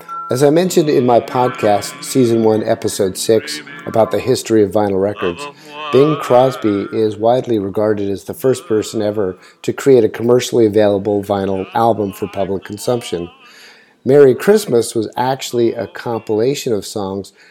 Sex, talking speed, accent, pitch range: male, 150 wpm, American, 105-130 Hz